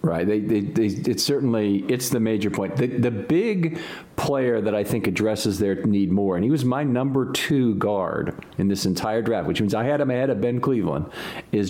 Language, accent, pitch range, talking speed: English, American, 95-120 Hz, 215 wpm